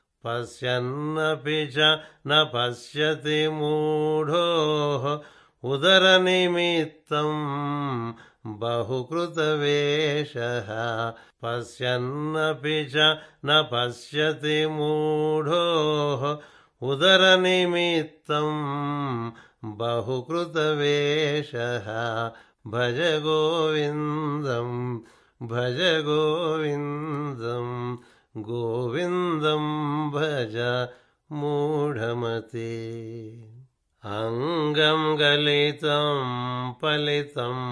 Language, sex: Telugu, male